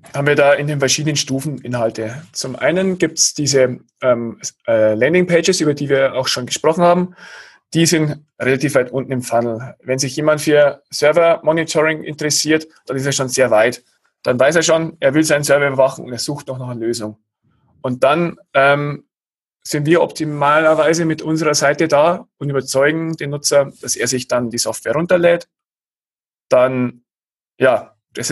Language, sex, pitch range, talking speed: German, male, 130-160 Hz, 170 wpm